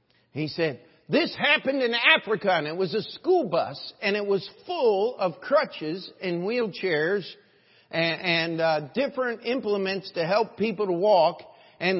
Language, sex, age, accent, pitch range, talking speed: English, male, 50-69, American, 135-215 Hz, 155 wpm